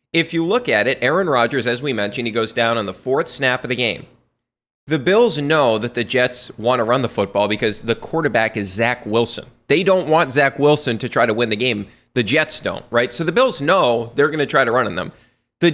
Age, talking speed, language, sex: 30-49, 250 wpm, English, male